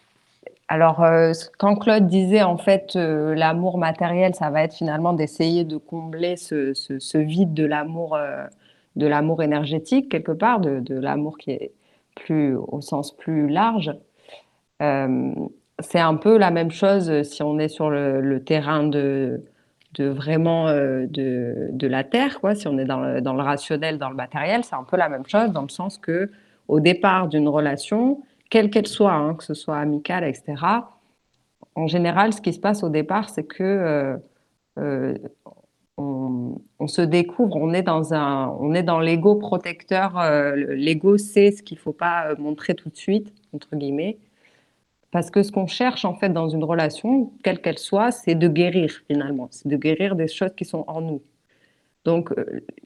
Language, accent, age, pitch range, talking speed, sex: French, French, 30-49, 150-195 Hz, 180 wpm, female